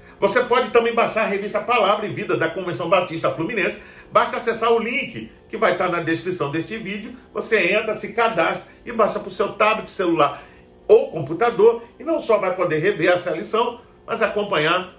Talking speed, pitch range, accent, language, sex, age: 190 wpm, 165-220 Hz, Brazilian, Portuguese, male, 50-69